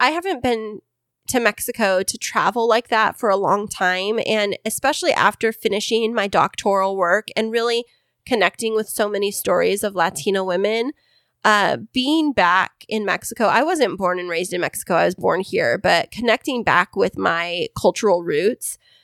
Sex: female